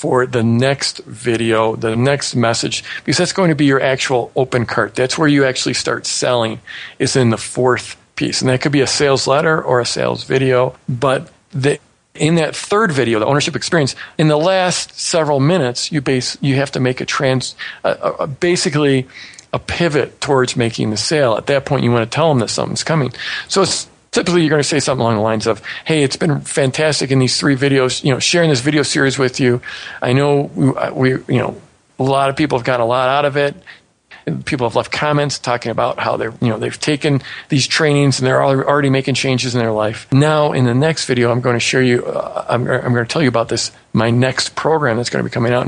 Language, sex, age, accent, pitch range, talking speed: English, male, 40-59, American, 120-145 Hz, 230 wpm